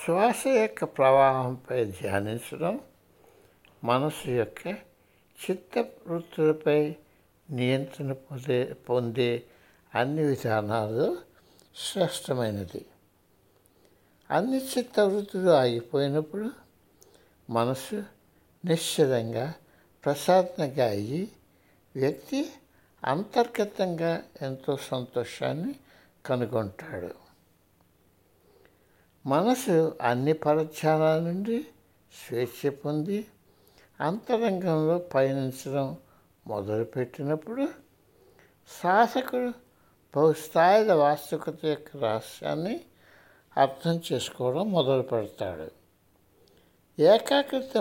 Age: 60-79